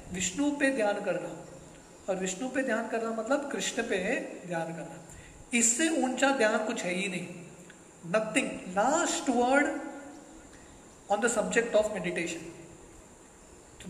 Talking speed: 125 wpm